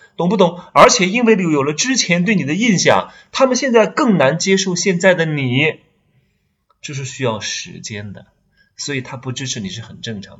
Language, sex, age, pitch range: Chinese, male, 20-39, 110-185 Hz